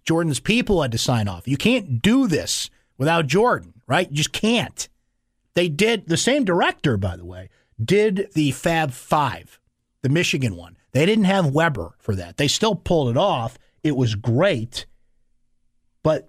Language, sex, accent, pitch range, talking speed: English, male, American, 120-170 Hz, 170 wpm